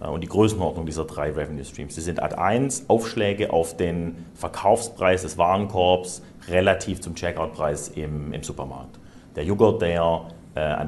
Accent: German